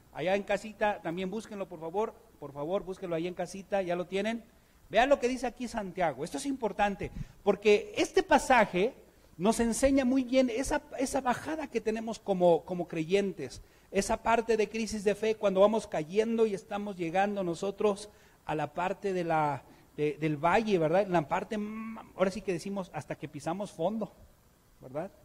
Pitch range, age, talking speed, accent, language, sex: 165-235 Hz, 40-59, 175 wpm, Mexican, Spanish, male